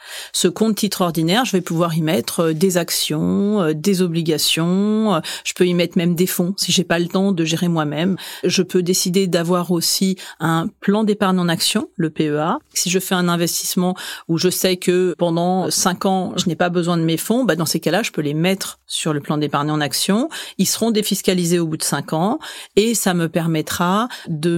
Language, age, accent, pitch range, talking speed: French, 40-59, French, 170-195 Hz, 210 wpm